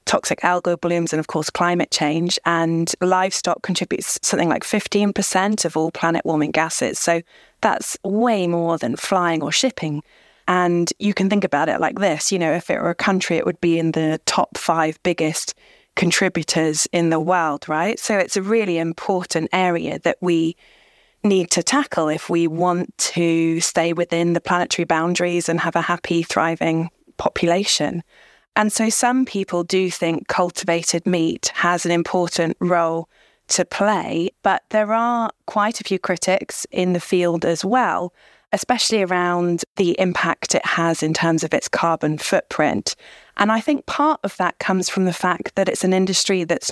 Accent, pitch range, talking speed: British, 170-190 Hz, 170 wpm